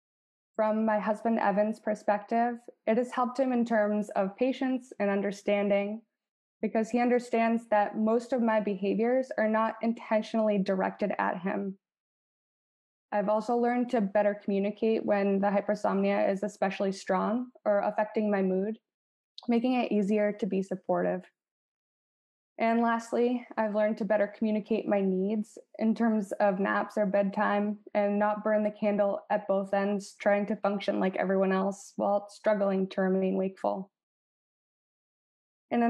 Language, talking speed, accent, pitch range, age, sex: English, 145 wpm, American, 200-230 Hz, 20-39, female